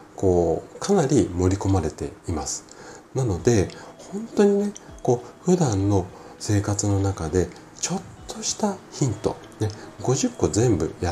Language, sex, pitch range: Japanese, male, 85-130 Hz